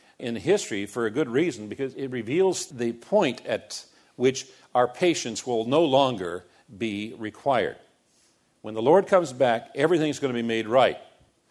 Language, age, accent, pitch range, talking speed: English, 50-69, American, 115-150 Hz, 160 wpm